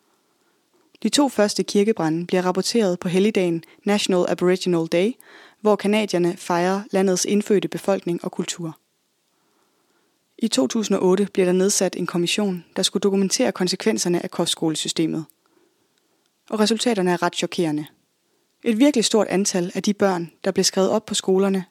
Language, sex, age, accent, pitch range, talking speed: Danish, female, 20-39, native, 180-220 Hz, 140 wpm